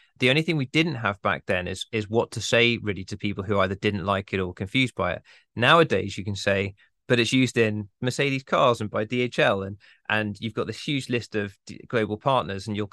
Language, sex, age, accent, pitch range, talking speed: English, male, 20-39, British, 95-115 Hz, 235 wpm